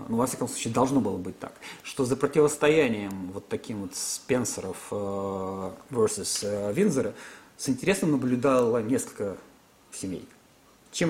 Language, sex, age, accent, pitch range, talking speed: Russian, male, 40-59, native, 120-150 Hz, 130 wpm